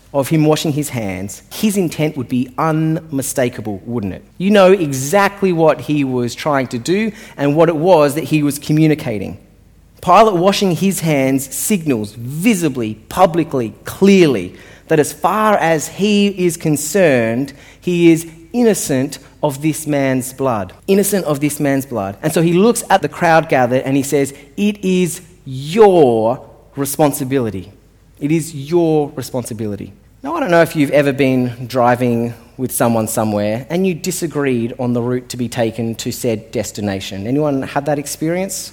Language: English